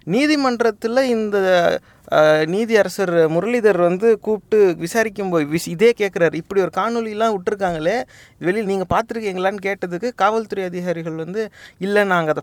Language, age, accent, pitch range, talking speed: English, 30-49, Indian, 170-220 Hz, 130 wpm